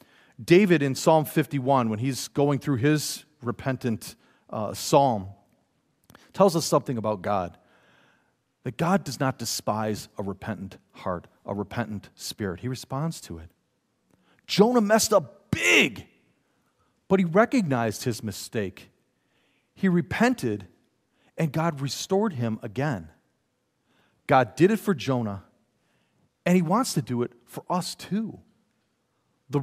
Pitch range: 115-185 Hz